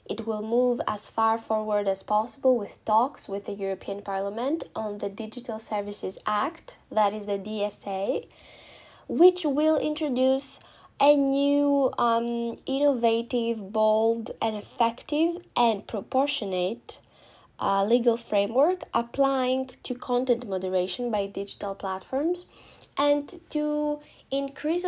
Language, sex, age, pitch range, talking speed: Greek, female, 10-29, 205-260 Hz, 115 wpm